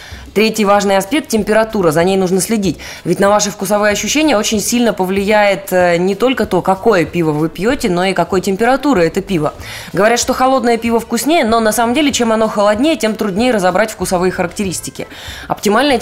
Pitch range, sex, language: 180-225 Hz, female, Russian